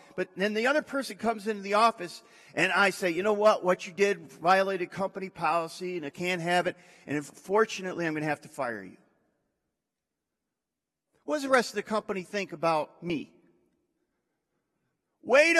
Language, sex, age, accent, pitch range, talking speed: English, male, 50-69, American, 175-235 Hz, 175 wpm